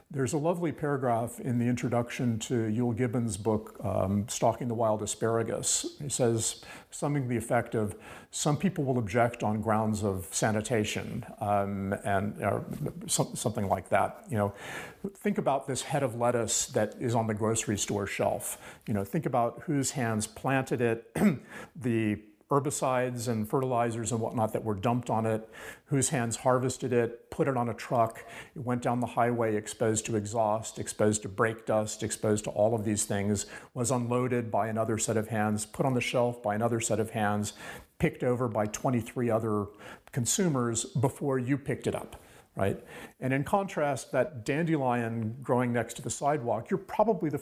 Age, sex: 50-69, male